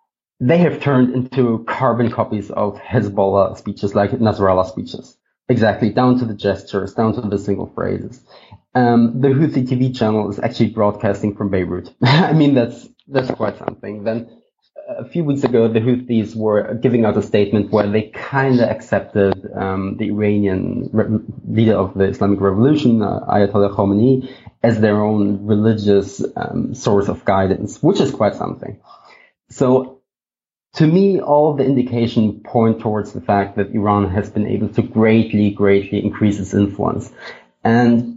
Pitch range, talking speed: 100-125 Hz, 160 wpm